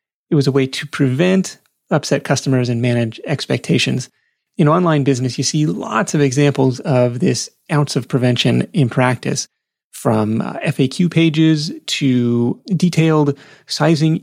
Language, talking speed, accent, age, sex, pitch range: English, 140 wpm, American, 30-49, male, 140-180 Hz